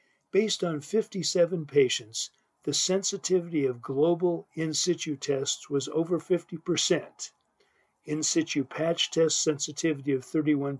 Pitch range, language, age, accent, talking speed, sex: 145-180 Hz, English, 50-69, American, 110 wpm, male